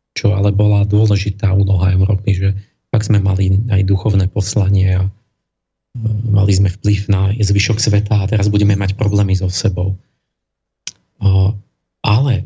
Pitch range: 100-120 Hz